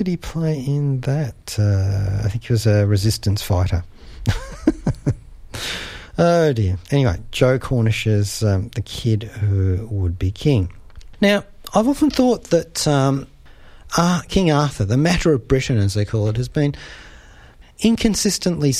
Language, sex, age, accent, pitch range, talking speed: English, male, 40-59, Australian, 100-140 Hz, 145 wpm